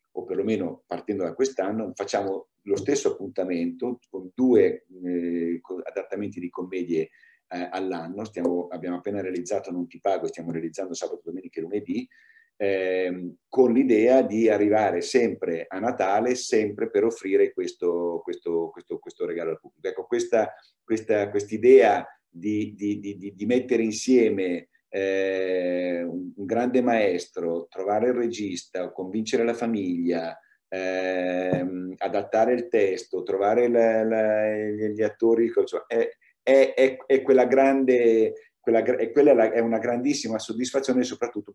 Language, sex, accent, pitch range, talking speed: Italian, male, native, 95-145 Hz, 120 wpm